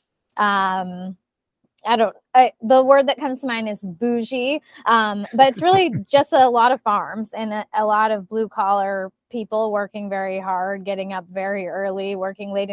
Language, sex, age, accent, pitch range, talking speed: English, female, 20-39, American, 195-230 Hz, 180 wpm